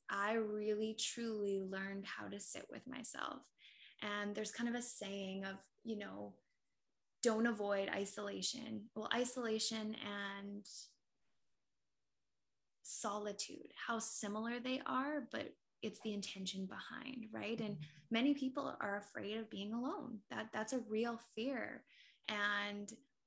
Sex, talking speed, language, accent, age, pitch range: female, 125 wpm, English, American, 10-29, 200-225 Hz